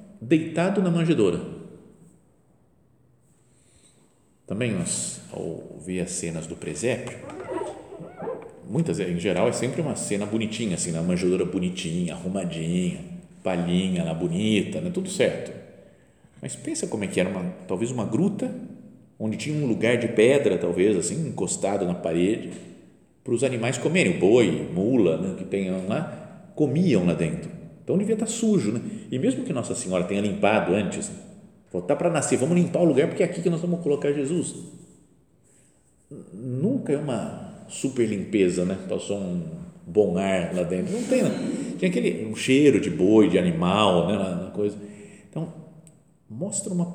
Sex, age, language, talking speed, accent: male, 50-69, Portuguese, 160 wpm, Brazilian